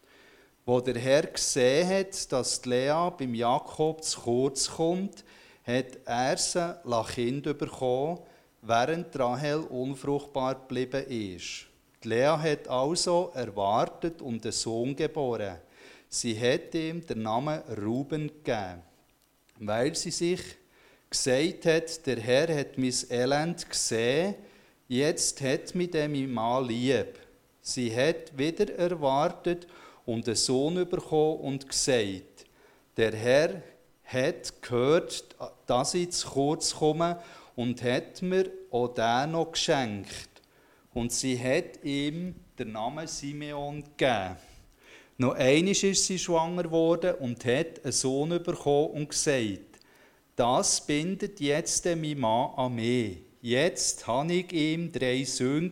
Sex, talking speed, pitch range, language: male, 125 wpm, 125-165 Hz, German